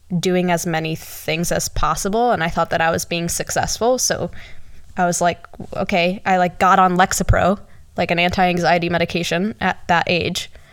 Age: 10-29